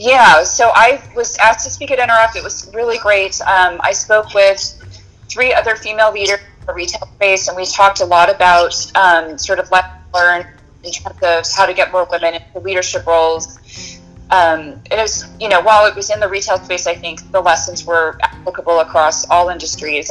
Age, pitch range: 30-49, 165-195 Hz